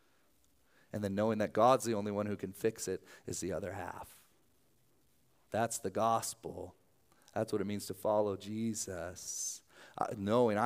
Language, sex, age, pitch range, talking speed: English, male, 30-49, 100-135 Hz, 160 wpm